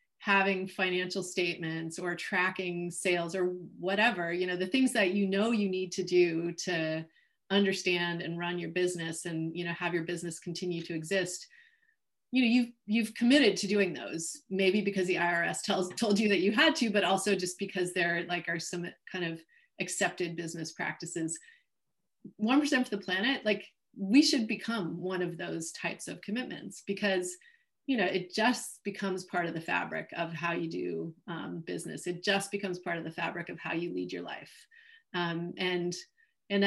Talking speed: 185 wpm